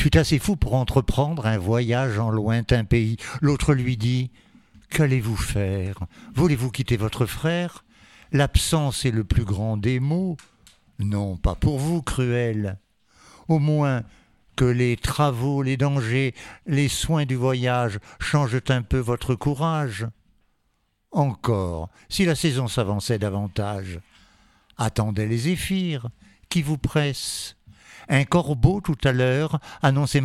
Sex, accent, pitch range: male, French, 115-150 Hz